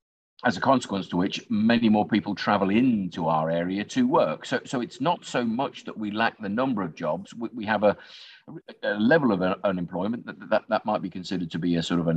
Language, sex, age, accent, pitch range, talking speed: English, male, 50-69, British, 90-110 Hz, 235 wpm